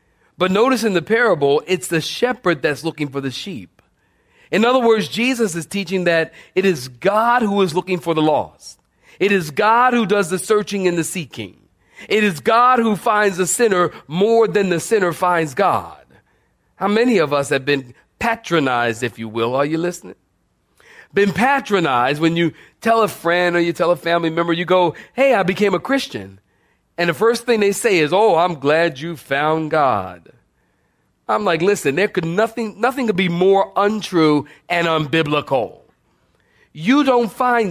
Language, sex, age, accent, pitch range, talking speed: English, male, 40-59, American, 165-235 Hz, 180 wpm